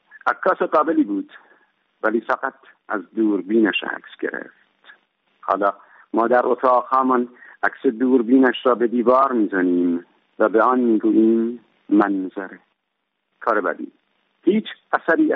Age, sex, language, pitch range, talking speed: 50-69, male, Persian, 110-140 Hz, 115 wpm